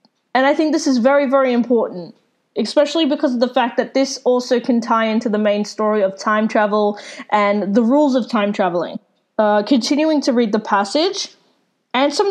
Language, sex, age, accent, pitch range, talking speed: English, female, 20-39, Australian, 225-280 Hz, 185 wpm